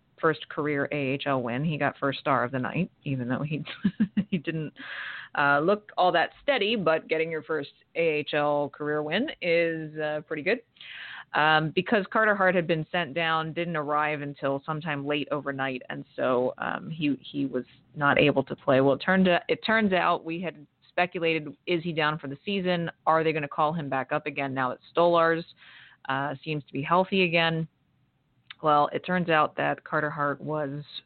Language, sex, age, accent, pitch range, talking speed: English, female, 30-49, American, 145-165 Hz, 190 wpm